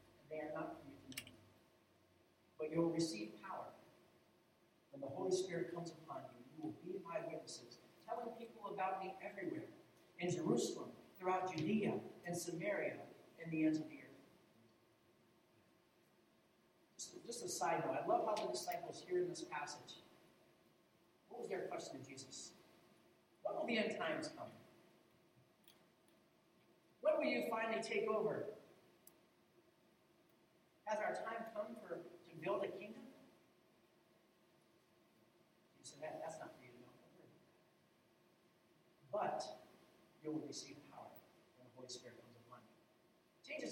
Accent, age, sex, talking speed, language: American, 40-59, male, 145 wpm, English